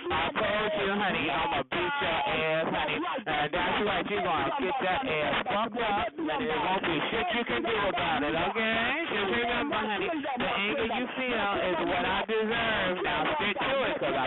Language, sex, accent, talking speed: English, male, American, 195 wpm